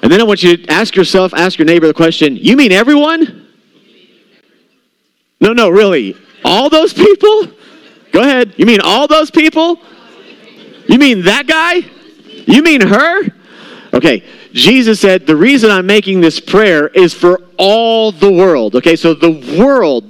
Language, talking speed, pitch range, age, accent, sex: English, 160 wpm, 170-250 Hz, 40-59, American, male